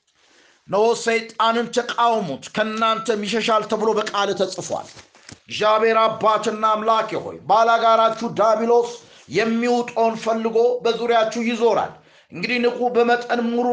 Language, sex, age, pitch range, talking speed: Amharic, male, 50-69, 225-240 Hz, 95 wpm